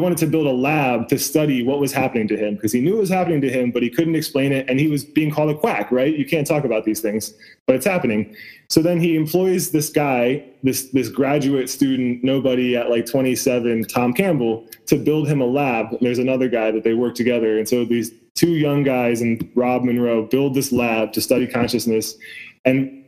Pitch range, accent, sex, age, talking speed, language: 120-150 Hz, American, male, 20-39, 225 wpm, English